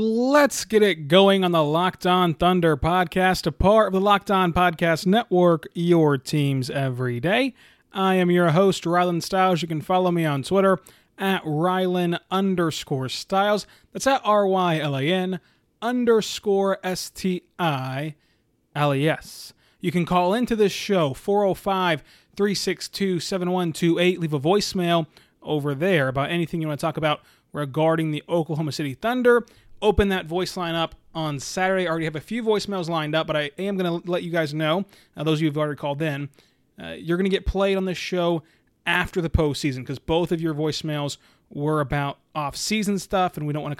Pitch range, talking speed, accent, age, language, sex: 150-190 Hz, 170 wpm, American, 30-49, English, male